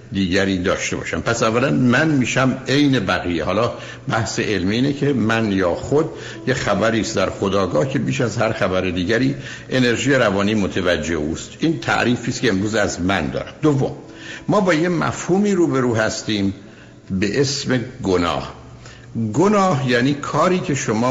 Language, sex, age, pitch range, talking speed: Persian, male, 60-79, 100-135 Hz, 150 wpm